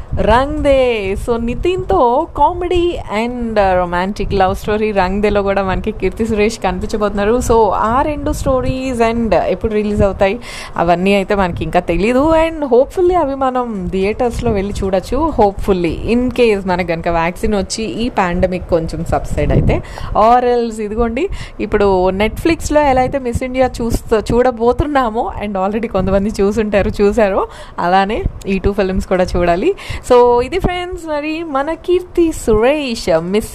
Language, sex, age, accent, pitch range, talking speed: Telugu, female, 20-39, native, 195-265 Hz, 140 wpm